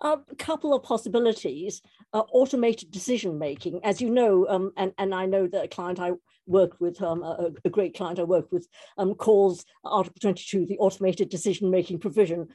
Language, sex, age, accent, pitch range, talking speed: English, female, 60-79, British, 180-225 Hz, 175 wpm